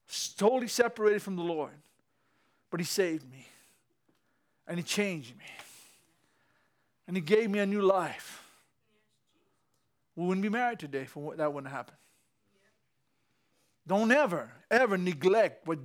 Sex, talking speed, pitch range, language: male, 135 wpm, 140-195 Hz, English